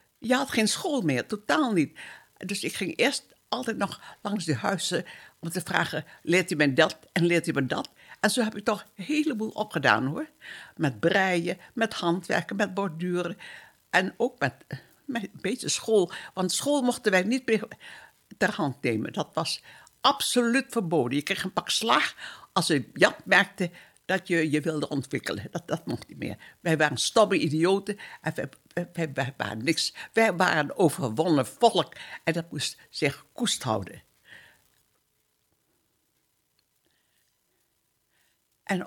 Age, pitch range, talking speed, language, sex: 60-79, 160-215 Hz, 160 wpm, Dutch, female